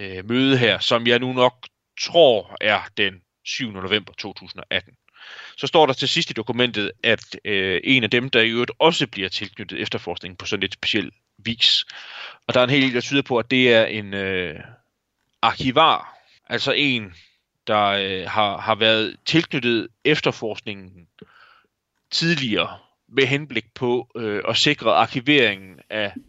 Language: Danish